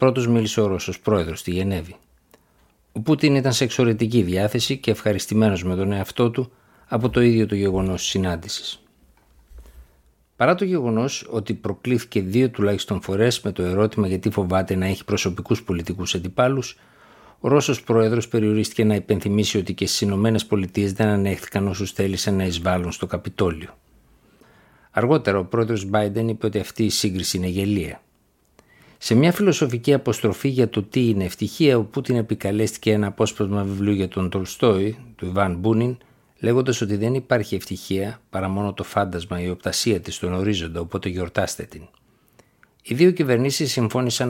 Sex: male